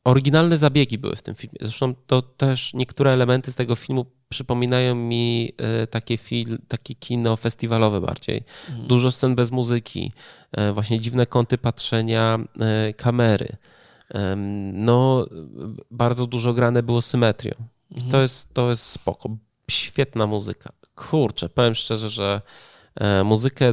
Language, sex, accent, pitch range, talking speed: Polish, male, native, 105-125 Hz, 125 wpm